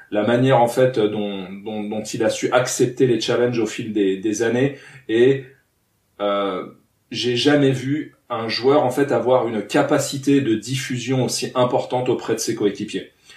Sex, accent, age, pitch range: male, French, 40-59, 115-135 Hz